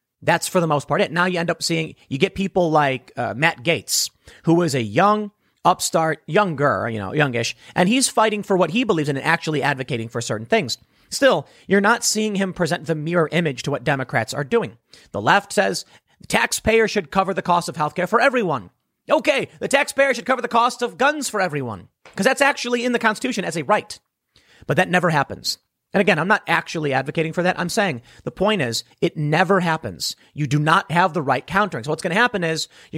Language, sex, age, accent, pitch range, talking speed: English, male, 30-49, American, 150-215 Hz, 225 wpm